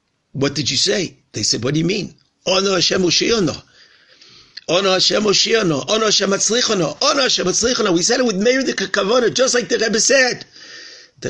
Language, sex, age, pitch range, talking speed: English, male, 50-69, 160-215 Hz, 180 wpm